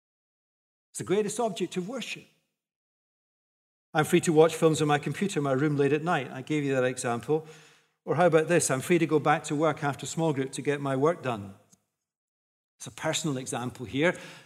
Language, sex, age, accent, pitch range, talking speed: English, male, 50-69, British, 150-210 Hz, 205 wpm